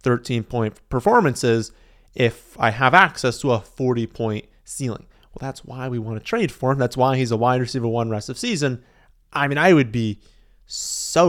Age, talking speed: 30-49, 195 wpm